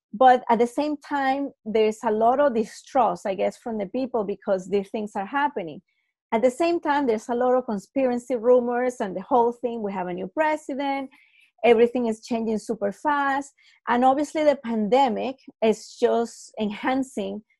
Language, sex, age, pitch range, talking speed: English, female, 30-49, 220-275 Hz, 175 wpm